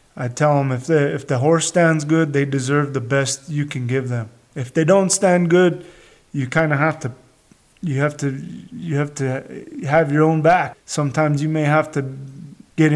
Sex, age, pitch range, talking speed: male, 30-49, 135-160 Hz, 205 wpm